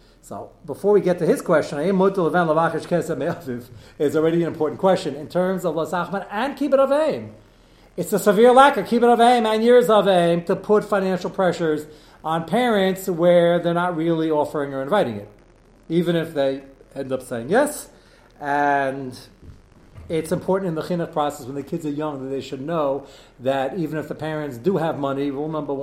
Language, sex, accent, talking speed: English, male, American, 190 wpm